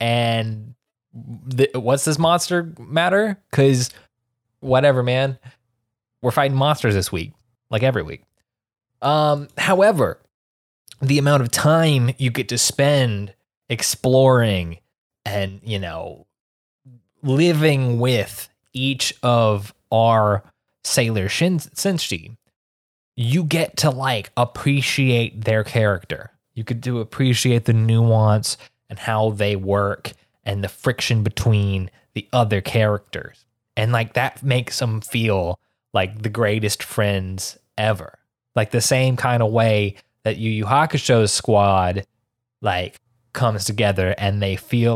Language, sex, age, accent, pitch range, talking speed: English, male, 20-39, American, 105-130 Hz, 125 wpm